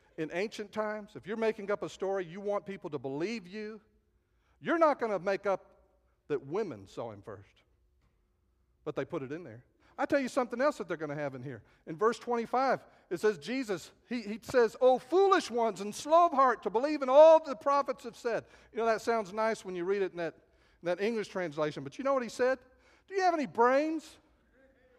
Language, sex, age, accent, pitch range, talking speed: English, male, 50-69, American, 195-285 Hz, 225 wpm